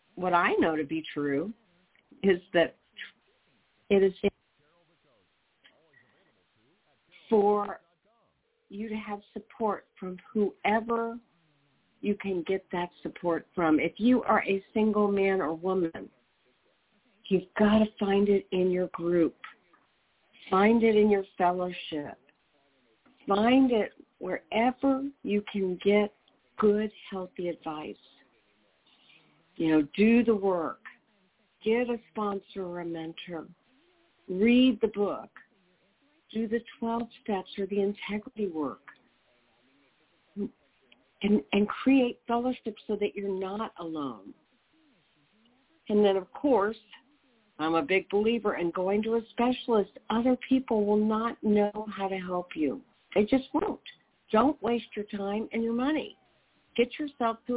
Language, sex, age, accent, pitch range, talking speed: English, female, 50-69, American, 185-230 Hz, 125 wpm